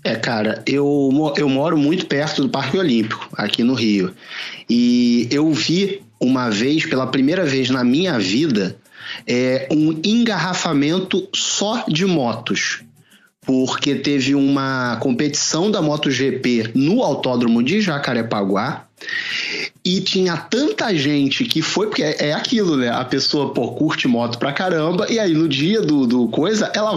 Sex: male